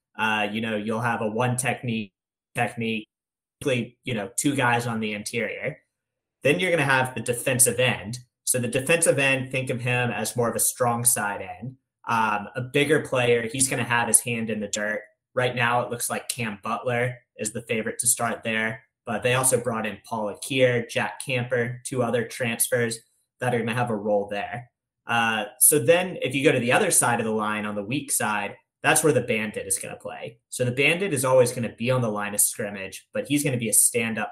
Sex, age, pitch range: male, 20-39, 110-130 Hz